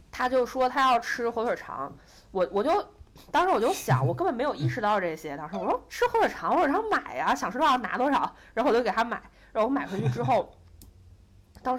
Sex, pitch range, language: female, 155-225 Hz, Chinese